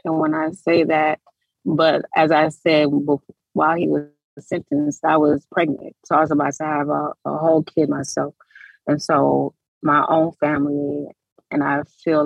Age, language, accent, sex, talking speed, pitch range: 30-49, English, American, female, 170 wpm, 145-185 Hz